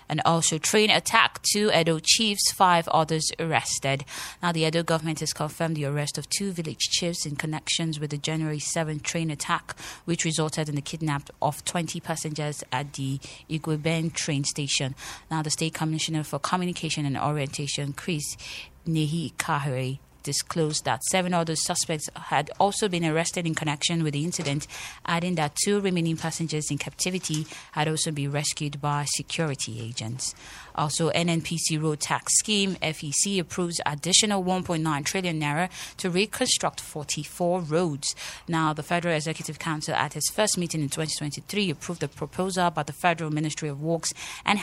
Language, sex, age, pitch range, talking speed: English, female, 20-39, 145-170 Hz, 155 wpm